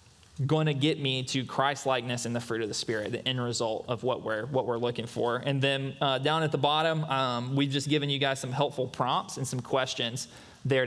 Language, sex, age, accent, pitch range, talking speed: English, male, 20-39, American, 125-150 Hz, 230 wpm